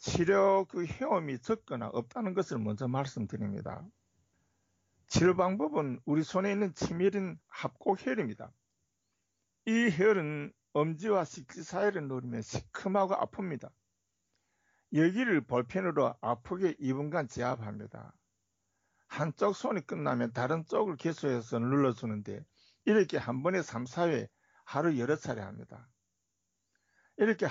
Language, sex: Korean, male